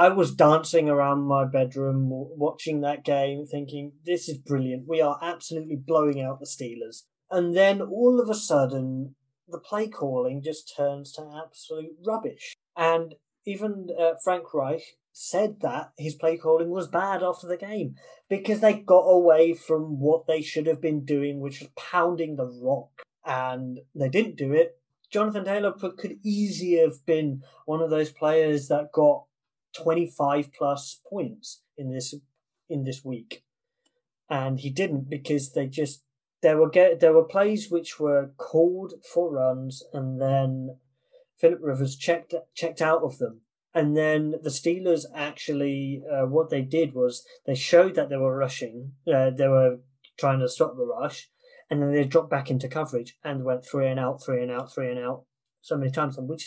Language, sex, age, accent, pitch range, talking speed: English, male, 30-49, British, 135-170 Hz, 170 wpm